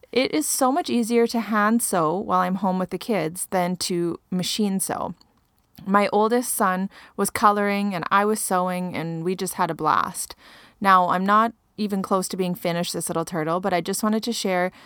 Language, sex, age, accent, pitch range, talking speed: English, female, 30-49, American, 180-225 Hz, 200 wpm